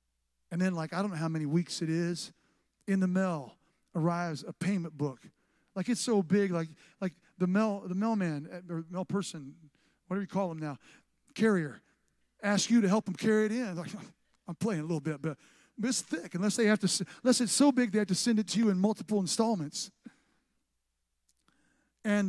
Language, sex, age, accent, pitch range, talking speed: English, male, 50-69, American, 160-210 Hz, 200 wpm